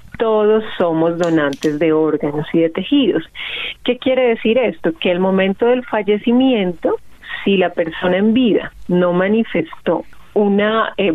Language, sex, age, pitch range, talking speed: Spanish, female, 30-49, 165-210 Hz, 140 wpm